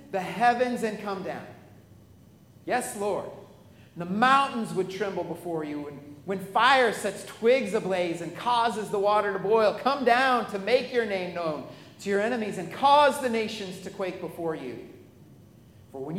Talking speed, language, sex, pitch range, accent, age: 165 wpm, English, male, 190-260 Hz, American, 40-59